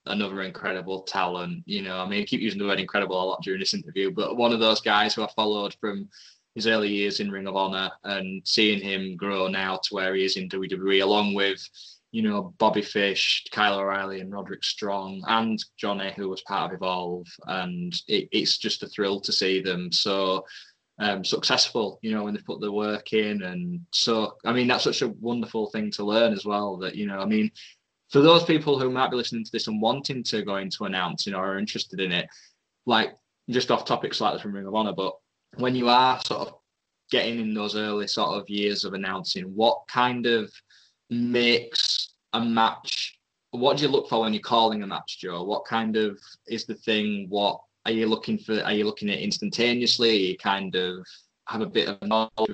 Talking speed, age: 210 wpm, 10-29